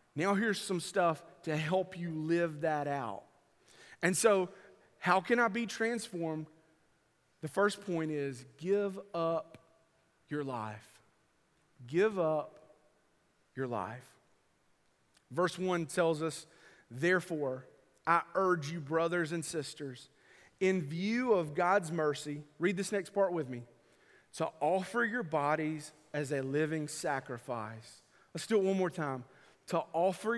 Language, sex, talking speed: English, male, 130 wpm